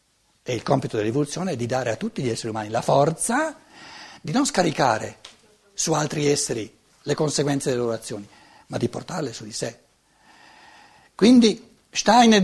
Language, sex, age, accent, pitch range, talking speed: Italian, male, 60-79, native, 140-225 Hz, 160 wpm